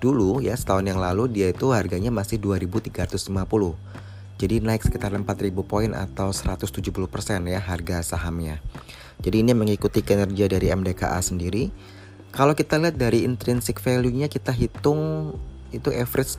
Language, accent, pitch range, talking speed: Indonesian, native, 95-110 Hz, 140 wpm